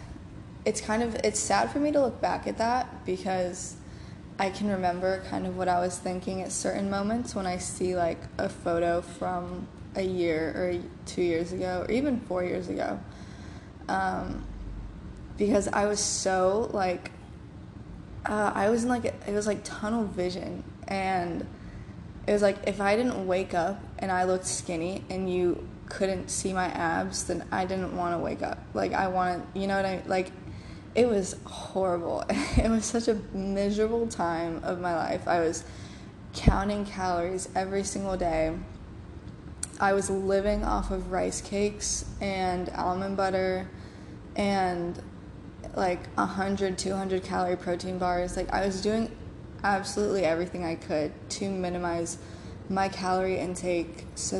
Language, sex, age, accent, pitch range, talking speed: English, female, 20-39, American, 170-195 Hz, 160 wpm